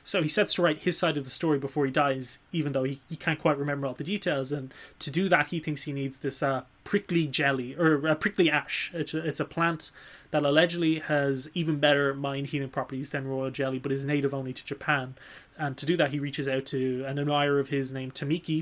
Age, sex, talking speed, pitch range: 20-39, male, 240 wpm, 140-160 Hz